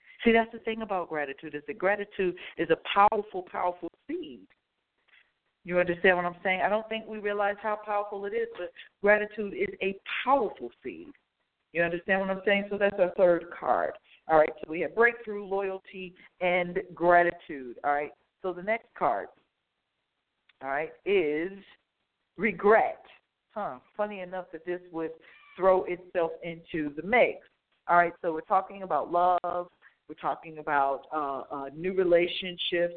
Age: 50-69